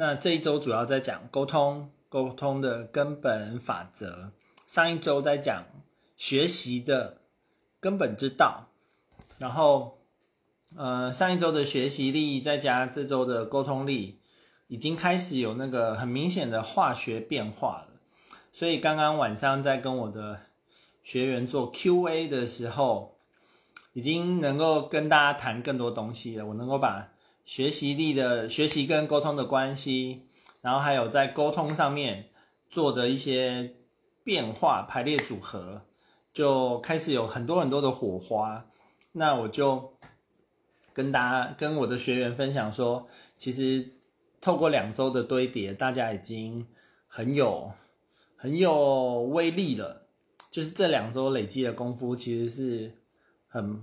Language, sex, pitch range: Chinese, male, 120-145 Hz